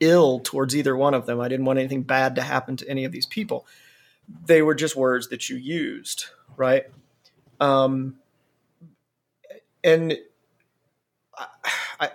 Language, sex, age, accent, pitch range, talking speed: English, male, 40-59, American, 130-165 Hz, 145 wpm